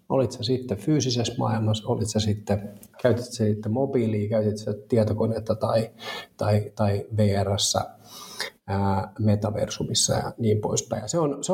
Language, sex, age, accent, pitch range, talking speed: Finnish, male, 30-49, native, 105-115 Hz, 130 wpm